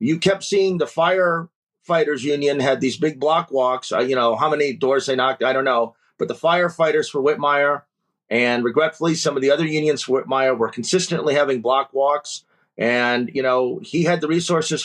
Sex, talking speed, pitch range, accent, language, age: male, 195 wpm, 125-160 Hz, American, English, 30-49